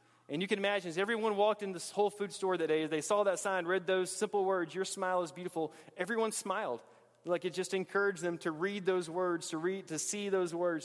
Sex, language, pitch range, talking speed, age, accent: male, English, 155-205 Hz, 240 wpm, 30-49, American